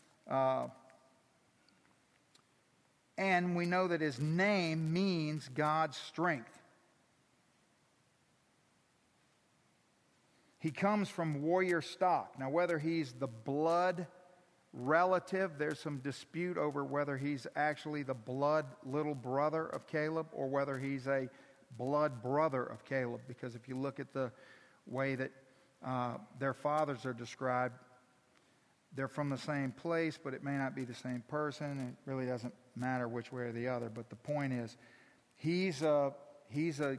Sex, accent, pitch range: male, American, 130-165 Hz